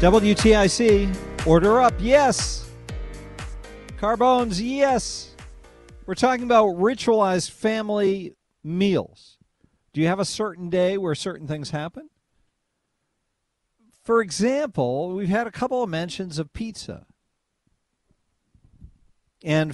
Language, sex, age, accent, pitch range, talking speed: English, male, 50-69, American, 120-190 Hz, 100 wpm